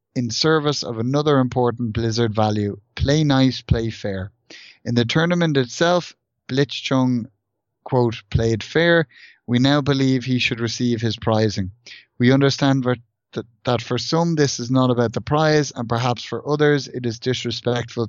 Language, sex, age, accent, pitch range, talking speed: English, male, 30-49, Irish, 115-140 Hz, 150 wpm